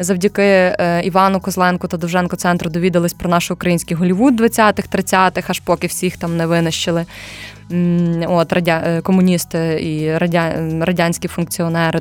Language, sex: Ukrainian, female